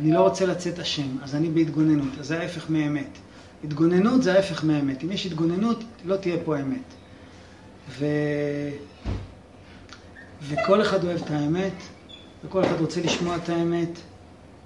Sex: male